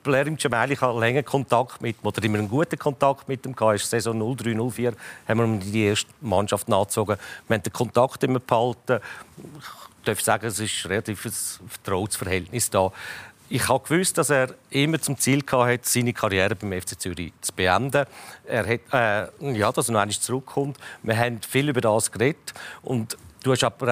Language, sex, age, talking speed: German, male, 50-69, 180 wpm